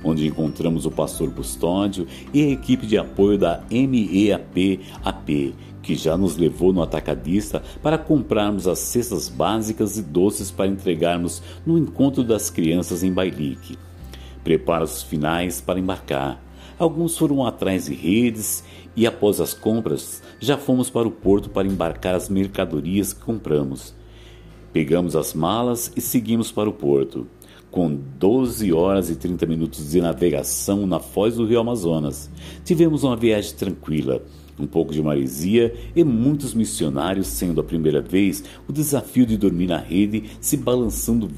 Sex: male